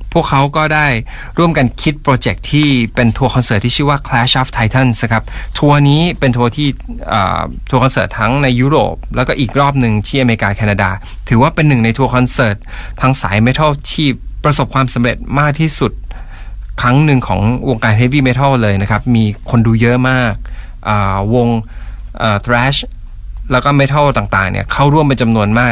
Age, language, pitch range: 20-39, Thai, 105-135 Hz